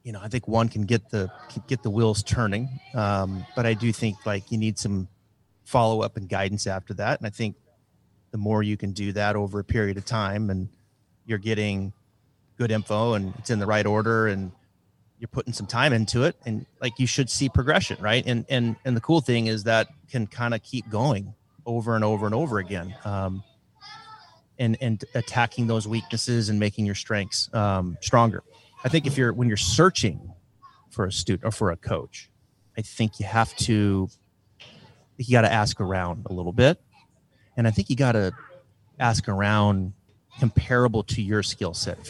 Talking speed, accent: 195 wpm, American